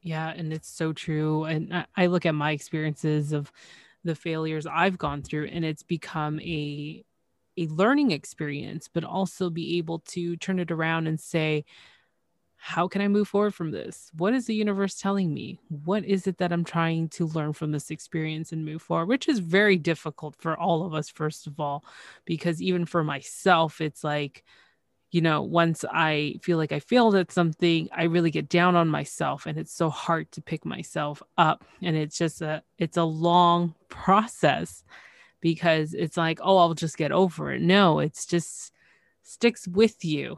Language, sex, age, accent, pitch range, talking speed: English, female, 20-39, American, 155-185 Hz, 185 wpm